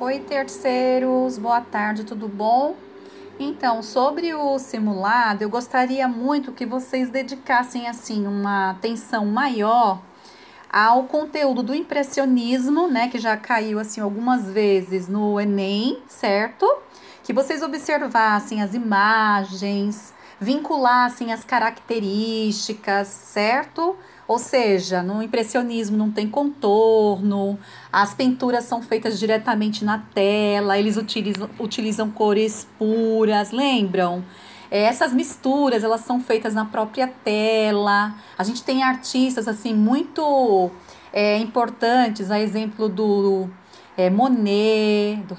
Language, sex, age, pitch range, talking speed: Portuguese, female, 30-49, 205-255 Hz, 110 wpm